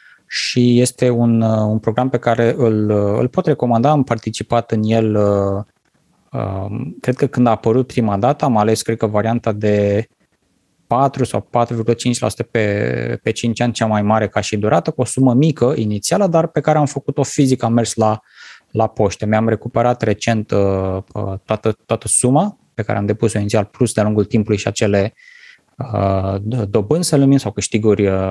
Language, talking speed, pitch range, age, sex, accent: Romanian, 165 wpm, 105-125 Hz, 20-39, male, native